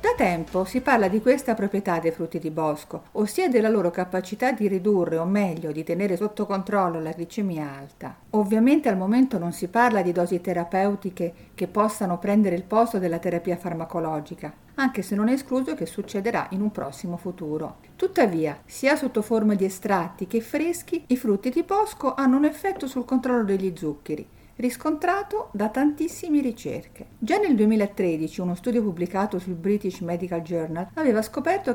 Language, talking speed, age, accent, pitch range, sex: Italian, 170 wpm, 50-69, native, 175-245 Hz, female